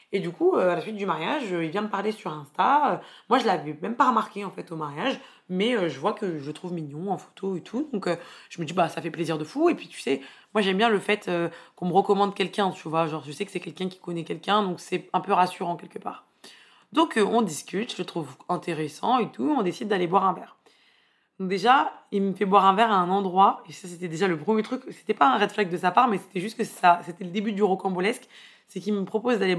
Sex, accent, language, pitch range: female, French, French, 175-220 Hz